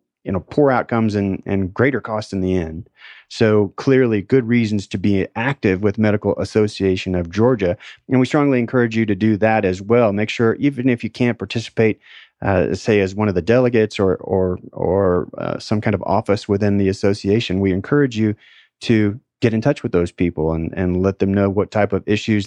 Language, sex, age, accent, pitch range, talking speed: English, male, 30-49, American, 100-115 Hz, 205 wpm